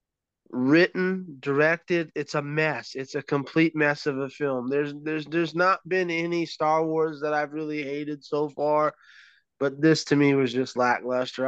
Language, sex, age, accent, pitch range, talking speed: English, male, 20-39, American, 150-180 Hz, 175 wpm